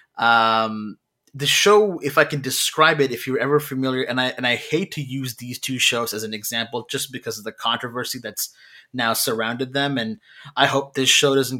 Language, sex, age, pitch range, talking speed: English, male, 20-39, 115-145 Hz, 205 wpm